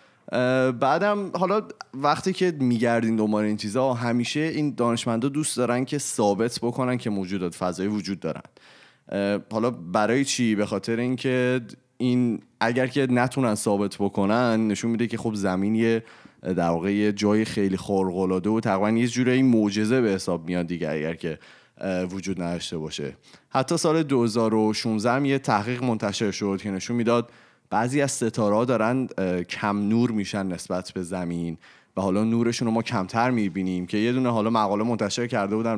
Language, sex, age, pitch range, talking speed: Persian, male, 30-49, 95-120 Hz, 155 wpm